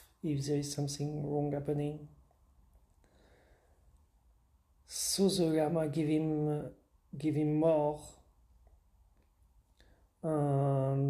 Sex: male